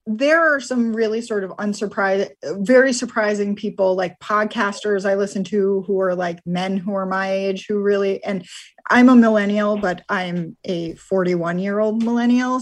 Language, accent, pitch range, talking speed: English, American, 185-225 Hz, 170 wpm